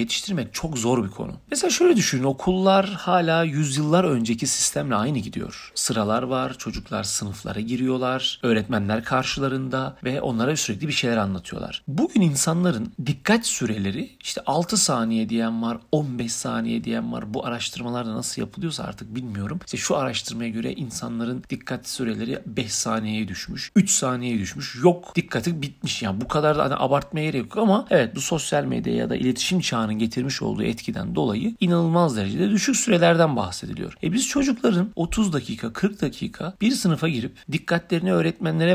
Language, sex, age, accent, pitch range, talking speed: Turkish, male, 40-59, native, 115-180 Hz, 155 wpm